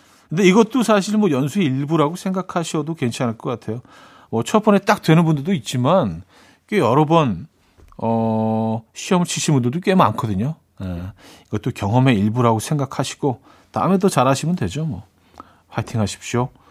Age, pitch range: 40-59, 115-165 Hz